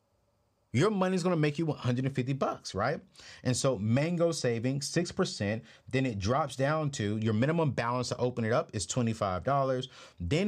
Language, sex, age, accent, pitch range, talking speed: English, male, 30-49, American, 110-140 Hz, 195 wpm